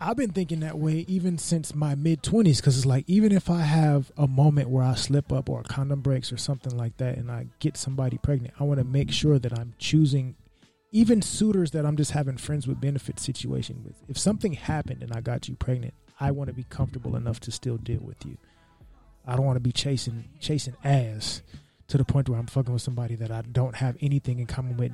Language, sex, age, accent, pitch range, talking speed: English, male, 20-39, American, 120-145 Hz, 235 wpm